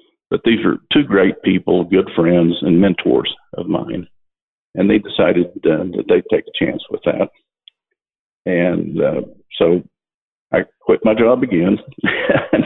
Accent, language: American, English